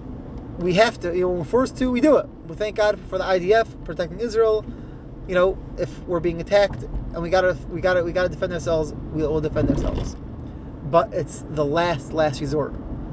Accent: American